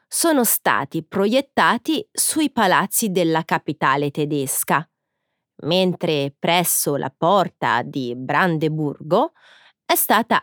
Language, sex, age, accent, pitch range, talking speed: Italian, female, 30-49, native, 155-225 Hz, 90 wpm